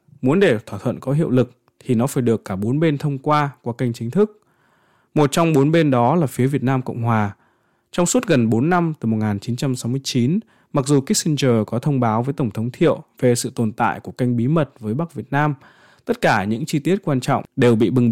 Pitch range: 115-150 Hz